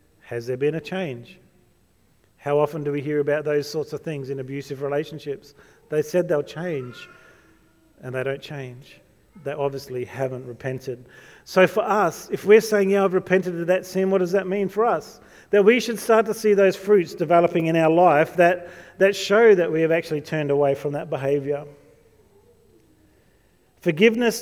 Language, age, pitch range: English, 40-59, 140-180 Hz